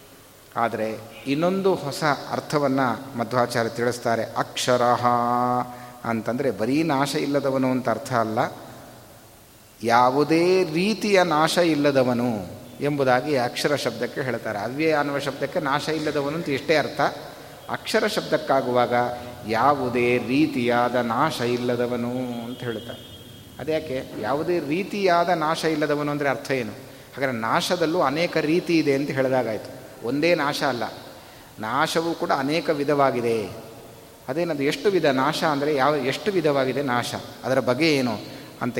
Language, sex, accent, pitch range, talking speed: Kannada, male, native, 120-150 Hz, 110 wpm